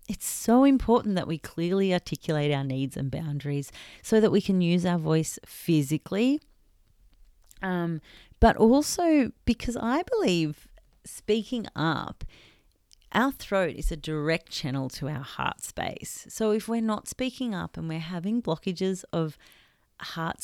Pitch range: 145-205 Hz